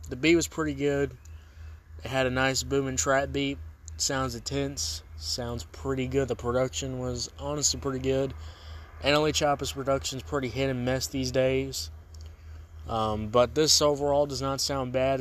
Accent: American